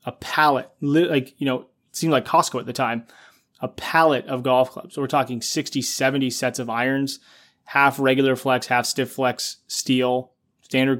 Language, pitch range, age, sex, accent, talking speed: English, 125-145 Hz, 20-39, male, American, 180 wpm